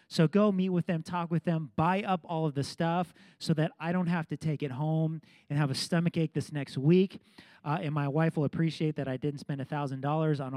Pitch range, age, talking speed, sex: 150-190 Hz, 30-49, 240 wpm, male